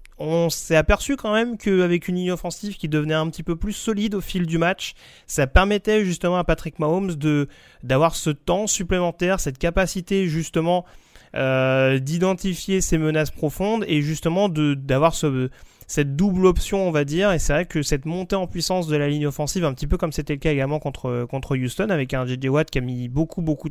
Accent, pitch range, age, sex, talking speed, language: French, 130-175 Hz, 30-49, male, 210 wpm, French